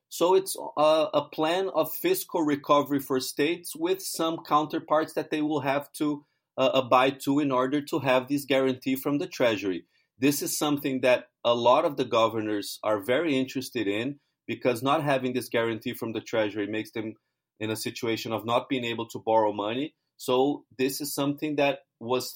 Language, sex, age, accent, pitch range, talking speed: English, male, 30-49, Brazilian, 125-150 Hz, 185 wpm